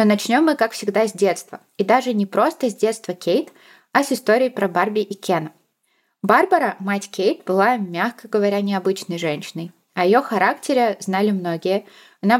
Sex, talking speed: female, 170 wpm